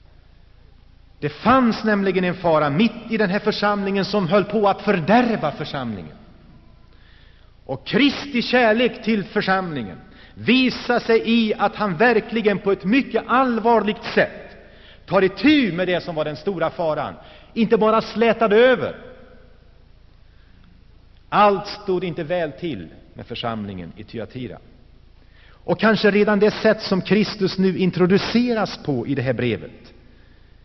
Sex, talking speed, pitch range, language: male, 135 wpm, 150-215 Hz, Swedish